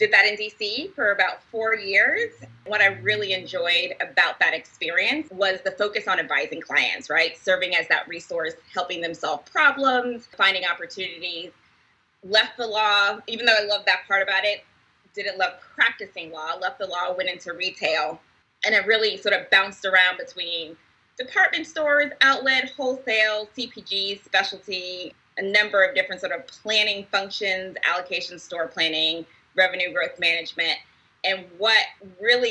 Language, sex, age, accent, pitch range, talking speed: English, female, 20-39, American, 180-225 Hz, 155 wpm